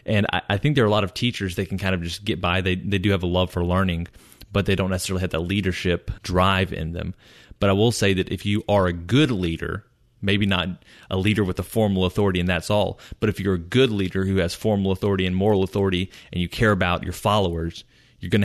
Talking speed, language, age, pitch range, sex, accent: 255 wpm, English, 30-49, 90-110 Hz, male, American